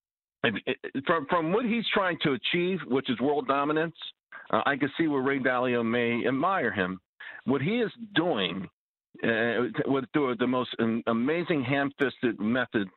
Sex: male